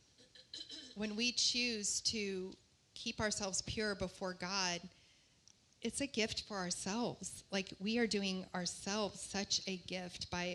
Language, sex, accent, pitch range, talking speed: English, female, American, 185-210 Hz, 130 wpm